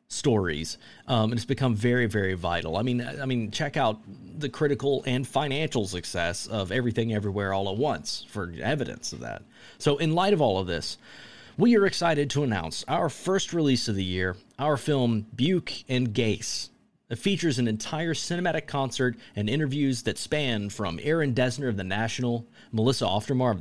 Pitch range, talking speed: 110-150 Hz, 180 wpm